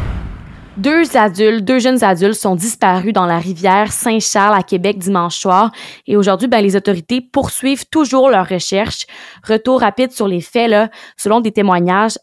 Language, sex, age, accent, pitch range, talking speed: French, female, 20-39, Canadian, 180-220 Hz, 160 wpm